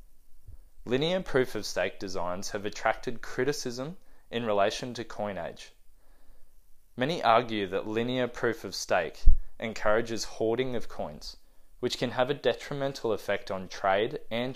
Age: 20-39